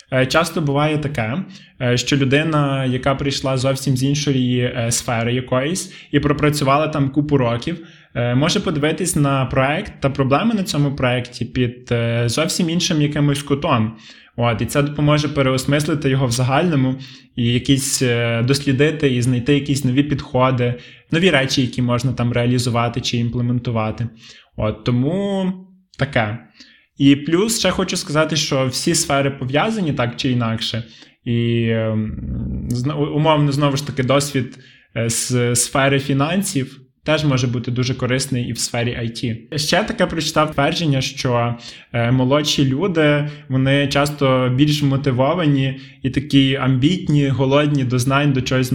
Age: 20-39